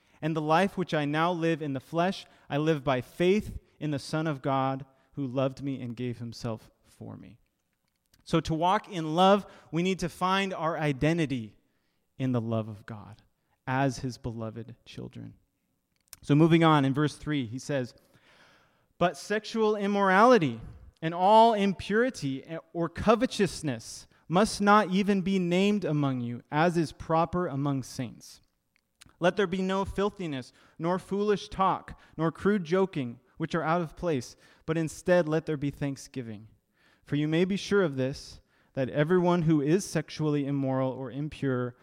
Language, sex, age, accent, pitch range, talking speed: English, male, 30-49, American, 130-180 Hz, 160 wpm